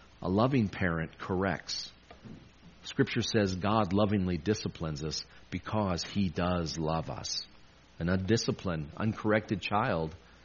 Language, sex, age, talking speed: English, male, 50-69, 110 wpm